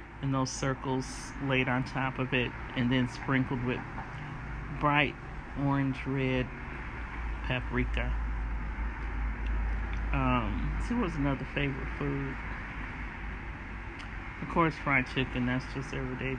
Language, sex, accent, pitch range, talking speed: English, male, American, 125-150 Hz, 105 wpm